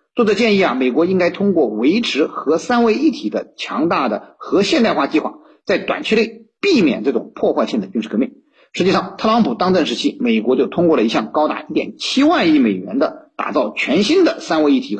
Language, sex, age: Chinese, male, 50-69